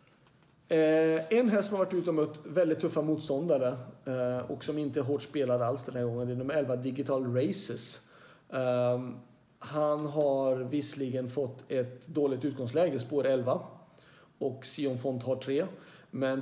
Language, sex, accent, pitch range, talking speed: Swedish, male, native, 125-150 Hz, 155 wpm